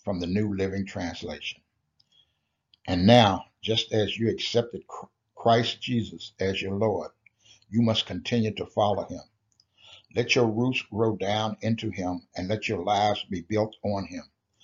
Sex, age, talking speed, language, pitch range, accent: male, 60-79, 150 wpm, English, 100-115 Hz, American